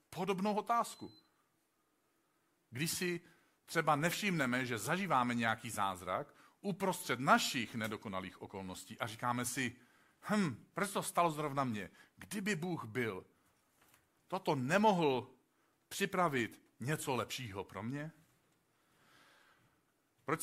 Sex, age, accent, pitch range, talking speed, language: male, 50-69, native, 120-170 Hz, 100 wpm, Czech